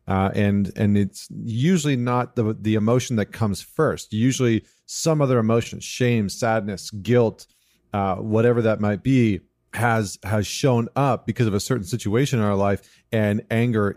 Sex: male